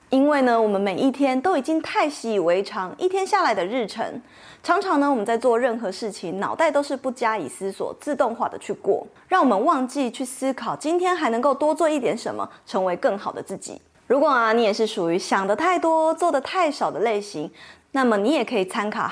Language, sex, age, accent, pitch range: Chinese, female, 20-39, American, 210-295 Hz